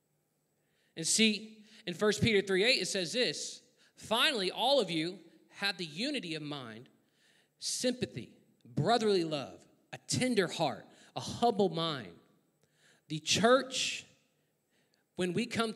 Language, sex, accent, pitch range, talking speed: English, male, American, 150-200 Hz, 120 wpm